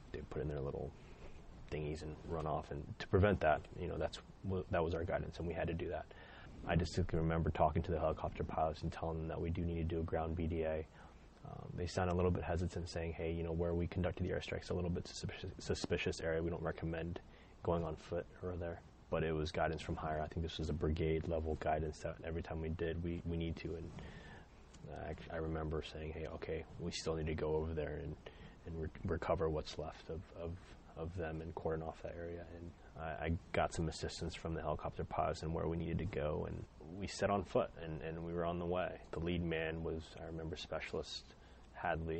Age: 20-39